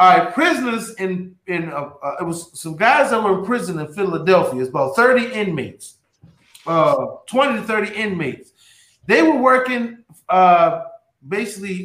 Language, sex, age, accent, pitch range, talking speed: English, male, 30-49, American, 170-255 Hz, 155 wpm